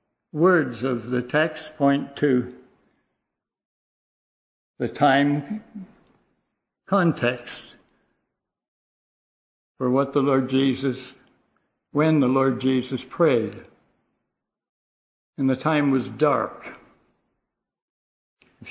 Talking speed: 80 wpm